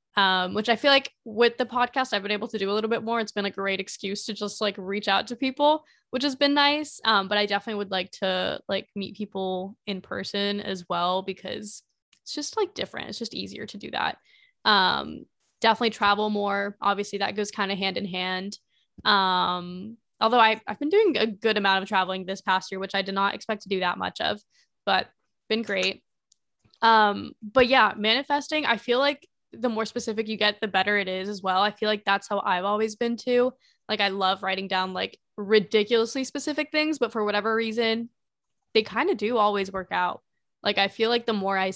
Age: 10-29